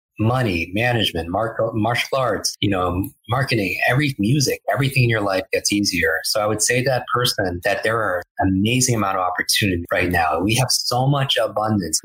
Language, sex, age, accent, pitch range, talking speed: English, male, 30-49, American, 100-135 Hz, 180 wpm